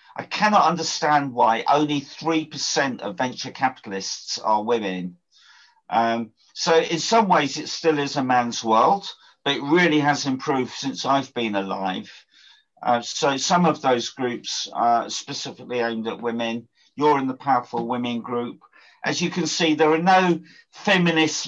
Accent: British